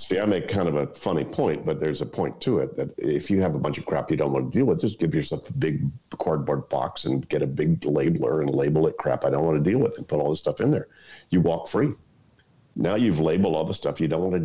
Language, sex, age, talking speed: English, male, 50-69, 290 wpm